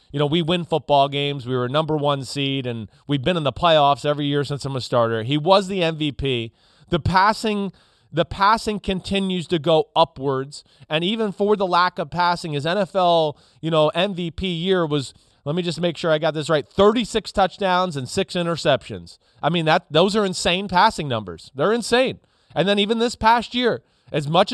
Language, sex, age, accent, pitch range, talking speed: English, male, 30-49, American, 140-190 Hz, 200 wpm